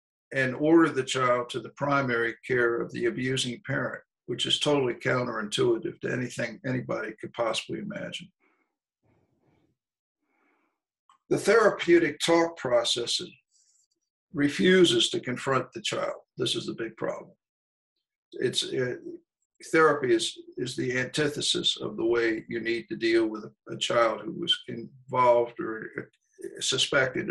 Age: 60-79